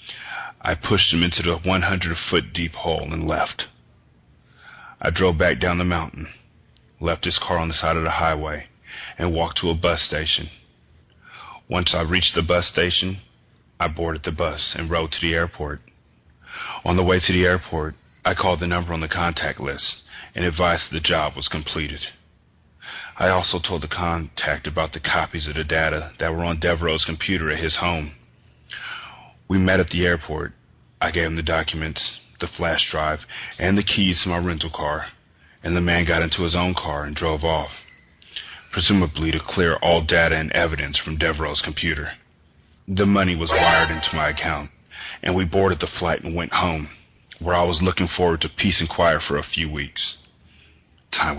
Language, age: English, 30-49